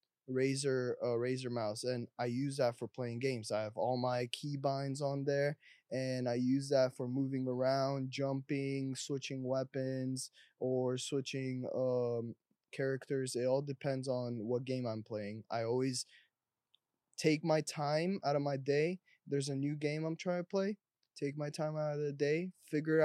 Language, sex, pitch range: English, male, 125-150 Hz